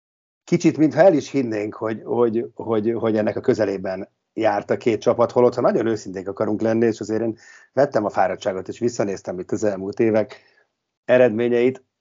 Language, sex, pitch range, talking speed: Hungarian, male, 100-120 Hz, 175 wpm